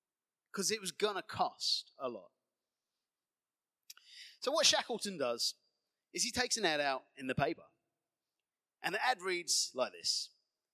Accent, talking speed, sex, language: British, 150 wpm, male, English